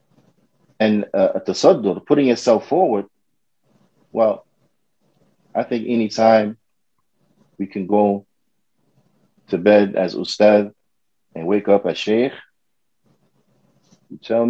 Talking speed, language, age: 100 wpm, English, 30-49